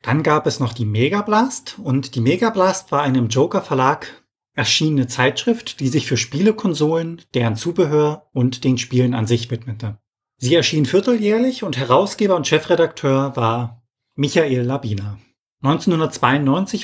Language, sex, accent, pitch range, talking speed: German, male, German, 125-155 Hz, 140 wpm